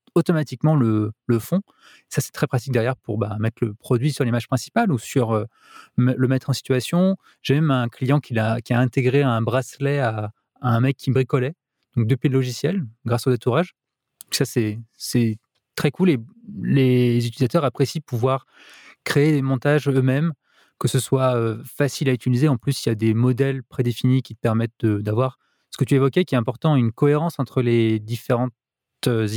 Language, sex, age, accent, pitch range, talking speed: French, male, 20-39, French, 120-140 Hz, 190 wpm